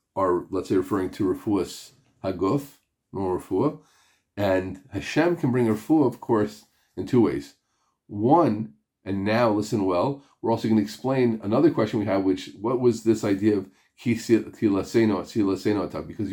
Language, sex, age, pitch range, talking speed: English, male, 40-59, 95-115 Hz, 145 wpm